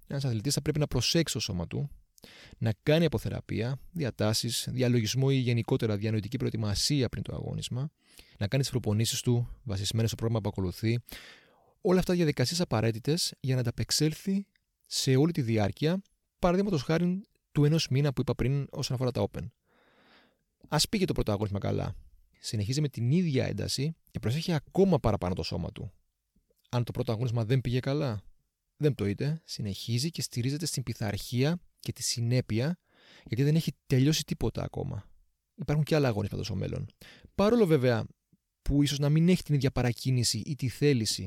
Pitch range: 110-145 Hz